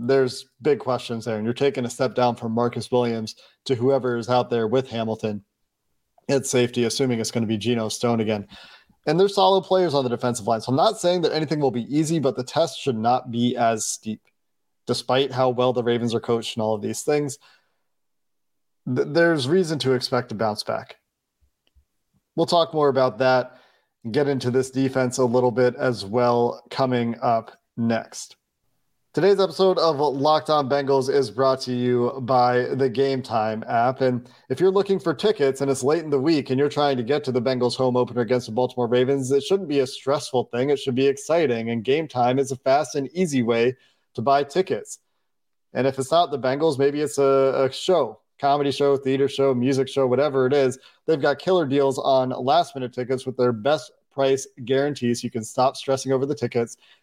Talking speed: 200 wpm